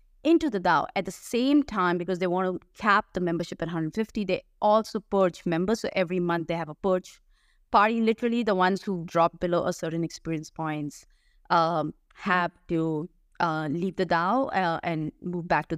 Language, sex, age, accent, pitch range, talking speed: English, female, 20-39, Indian, 175-235 Hz, 190 wpm